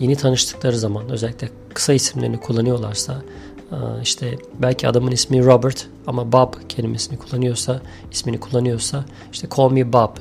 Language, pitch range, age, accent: Turkish, 110-130 Hz, 40-59, native